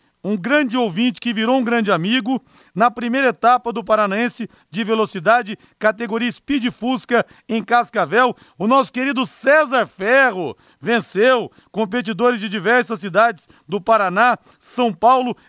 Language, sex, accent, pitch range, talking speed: Portuguese, male, Brazilian, 205-245 Hz, 130 wpm